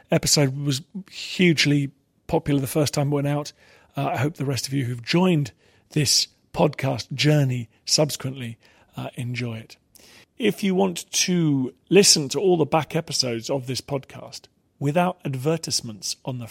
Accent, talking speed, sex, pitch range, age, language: British, 155 wpm, male, 125-155 Hz, 40-59, English